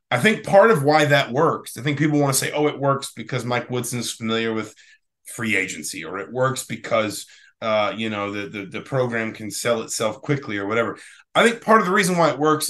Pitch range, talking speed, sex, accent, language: 115-145 Hz, 235 wpm, male, American, English